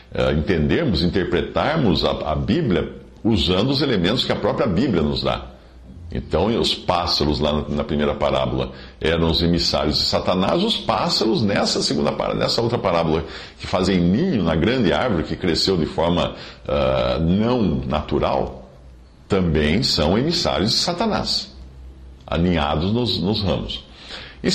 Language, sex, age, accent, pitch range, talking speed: Portuguese, male, 50-69, Brazilian, 75-115 Hz, 135 wpm